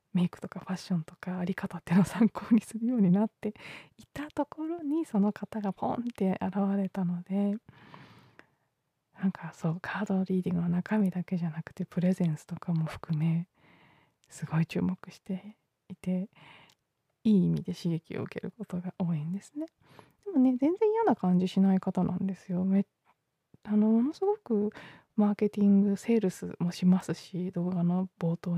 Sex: female